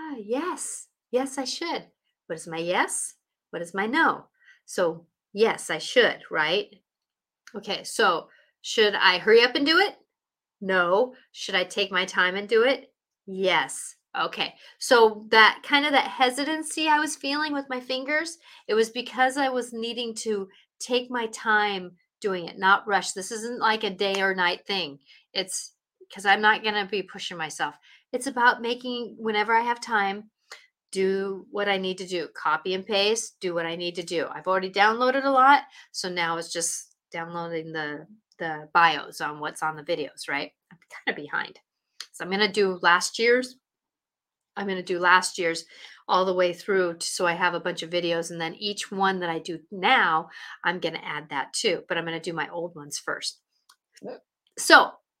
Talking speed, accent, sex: 190 wpm, American, female